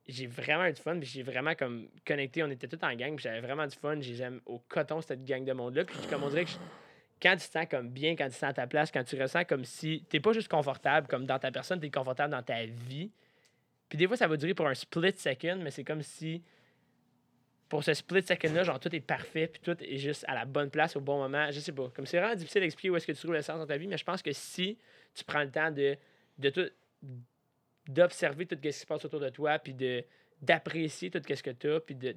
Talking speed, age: 275 wpm, 20-39